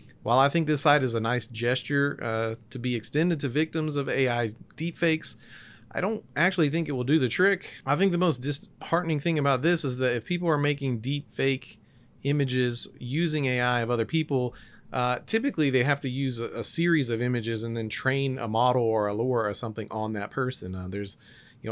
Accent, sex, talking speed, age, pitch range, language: American, male, 205 wpm, 40-59, 115-150 Hz, English